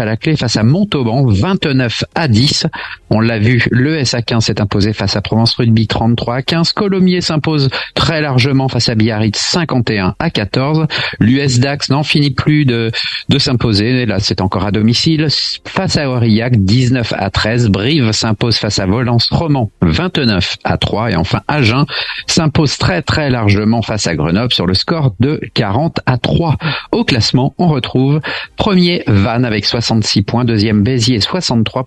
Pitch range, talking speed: 115-150 Hz, 170 wpm